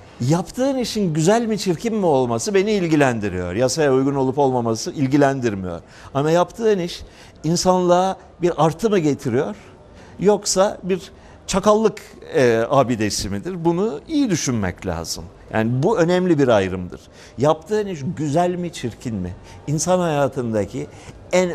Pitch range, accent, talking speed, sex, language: 110-170 Hz, native, 125 wpm, male, Turkish